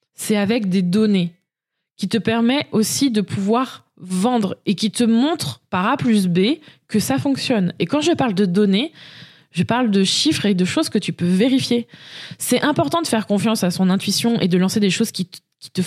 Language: French